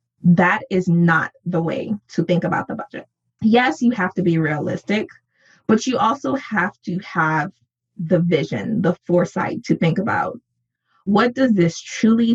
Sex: female